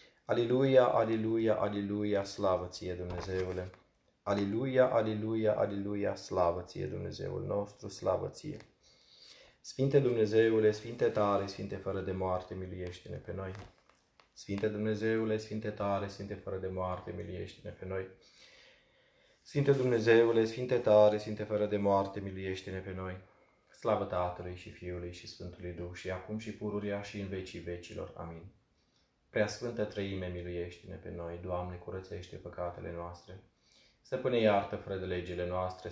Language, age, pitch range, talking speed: Romanian, 20-39, 90-105 Hz, 130 wpm